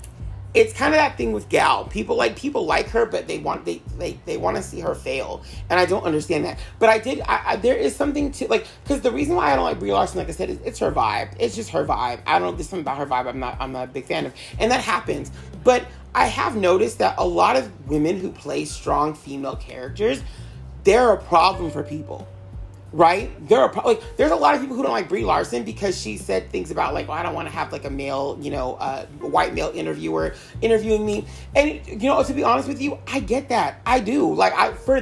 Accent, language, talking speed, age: American, English, 255 wpm, 30-49